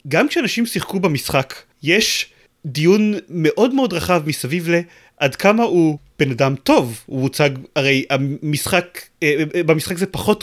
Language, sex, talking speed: Hebrew, male, 130 wpm